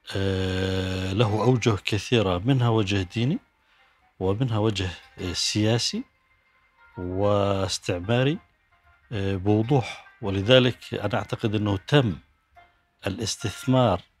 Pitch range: 95-120 Hz